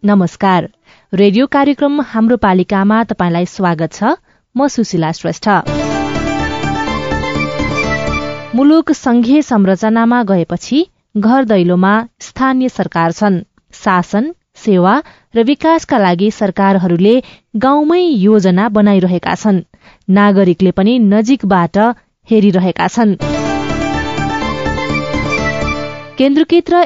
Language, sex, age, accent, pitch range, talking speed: English, female, 20-39, Indian, 180-245 Hz, 80 wpm